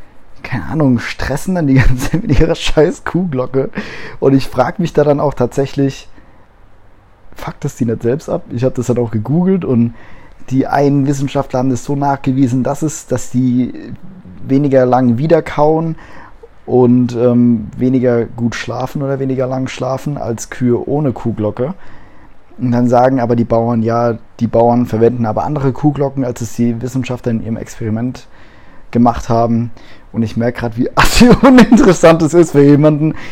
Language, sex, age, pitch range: German, male, 20-39, 115-140 Hz